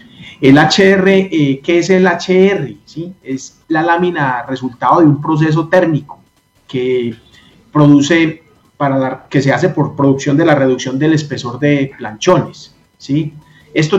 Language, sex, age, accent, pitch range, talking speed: Spanish, male, 30-49, Colombian, 130-155 Hz, 145 wpm